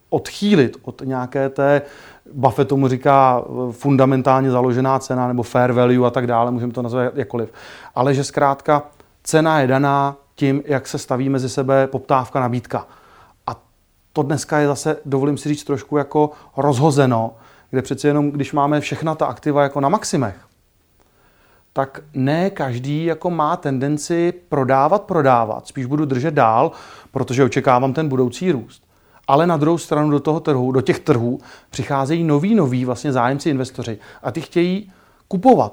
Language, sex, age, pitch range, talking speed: Czech, male, 30-49, 130-155 Hz, 155 wpm